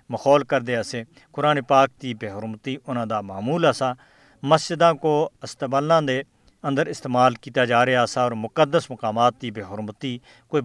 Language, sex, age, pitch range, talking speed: Urdu, male, 50-69, 125-150 Hz, 160 wpm